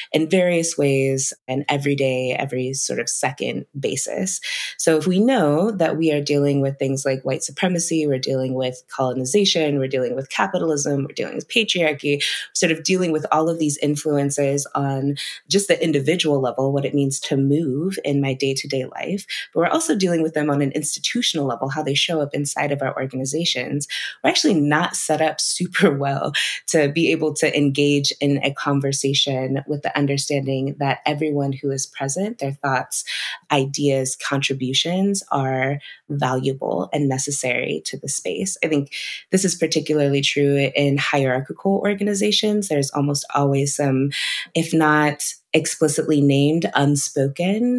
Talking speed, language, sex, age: 160 wpm, English, female, 20-39